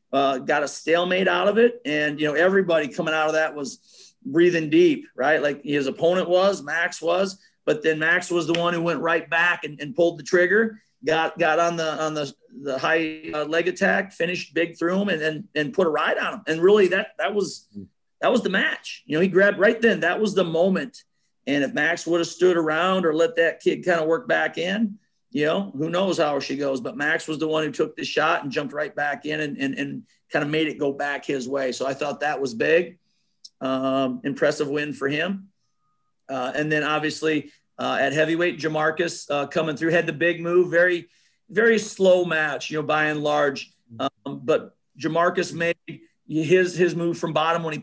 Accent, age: American, 40-59